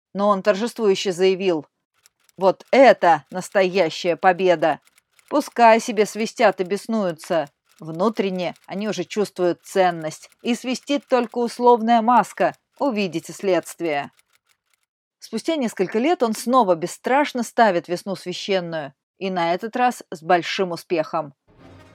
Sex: female